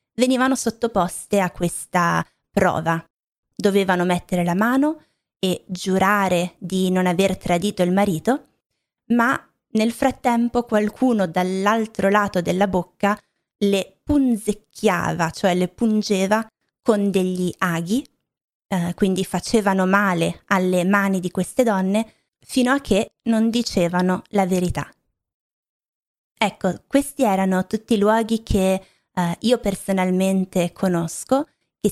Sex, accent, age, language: female, native, 20-39, Italian